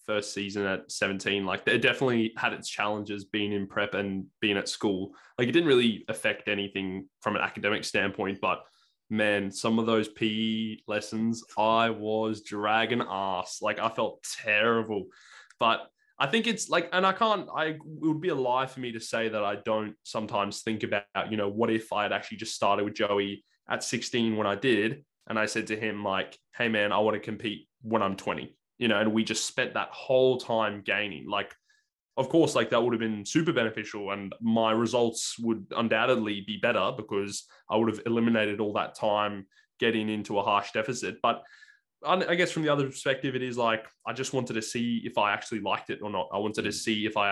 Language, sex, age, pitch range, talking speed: English, male, 20-39, 105-120 Hz, 210 wpm